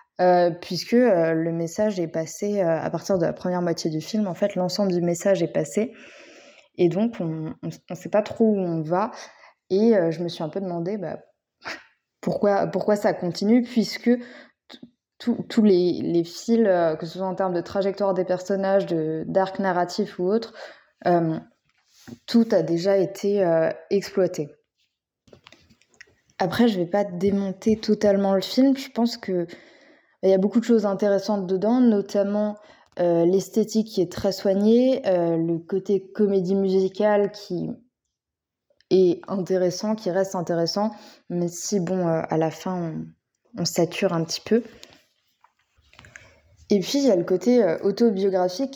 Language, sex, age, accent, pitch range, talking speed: French, female, 20-39, French, 175-215 Hz, 165 wpm